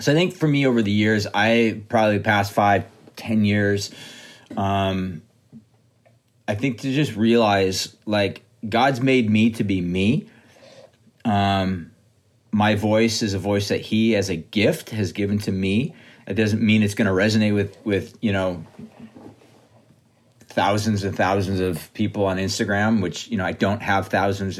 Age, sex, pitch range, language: 30-49, male, 100-115 Hz, English